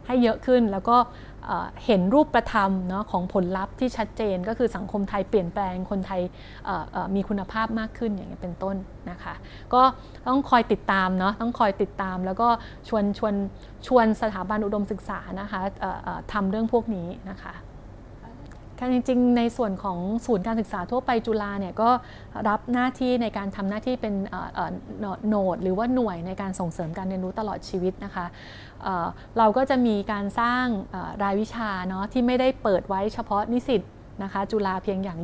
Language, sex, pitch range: Thai, female, 190-230 Hz